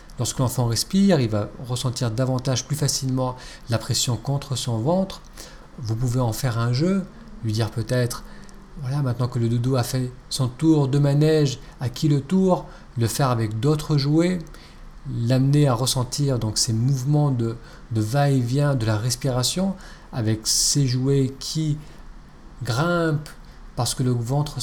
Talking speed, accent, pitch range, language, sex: 160 wpm, French, 125-160 Hz, French, male